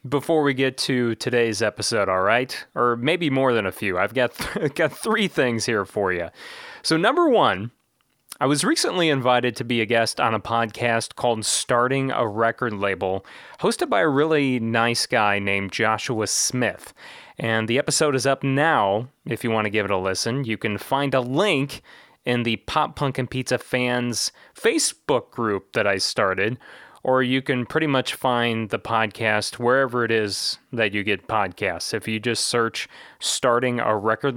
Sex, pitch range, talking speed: male, 110-135 Hz, 180 wpm